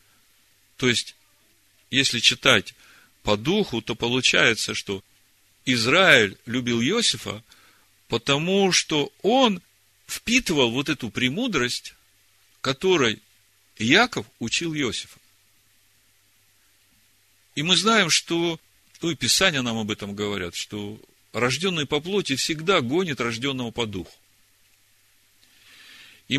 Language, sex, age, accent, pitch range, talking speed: Russian, male, 40-59, native, 105-140 Hz, 100 wpm